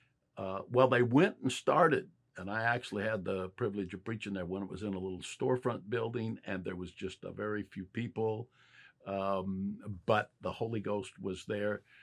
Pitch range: 95-120 Hz